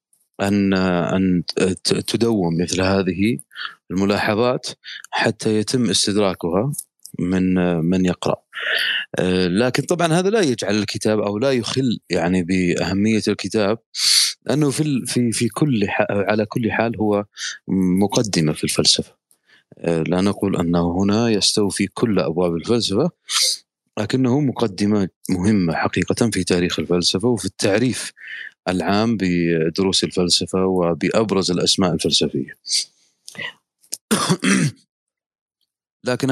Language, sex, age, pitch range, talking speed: Arabic, male, 30-49, 90-115 Hz, 100 wpm